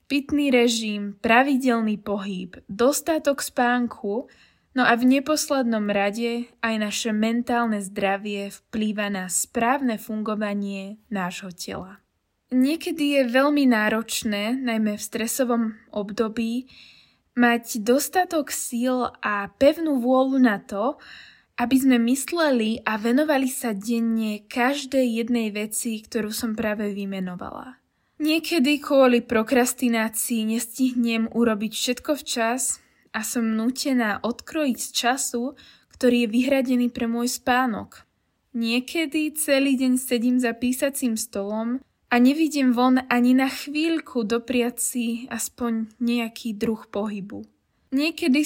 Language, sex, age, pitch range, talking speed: Slovak, female, 20-39, 220-260 Hz, 110 wpm